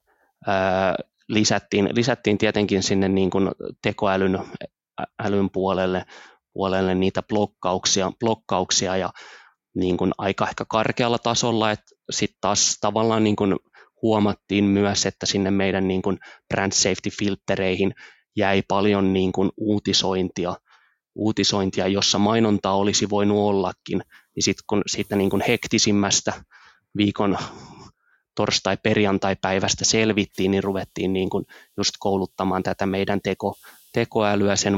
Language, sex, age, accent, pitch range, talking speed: Finnish, male, 20-39, native, 95-105 Hz, 115 wpm